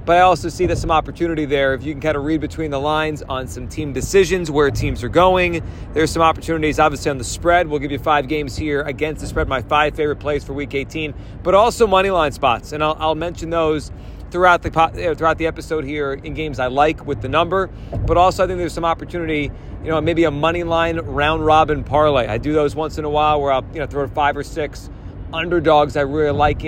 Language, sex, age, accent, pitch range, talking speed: English, male, 30-49, American, 140-170 Hz, 240 wpm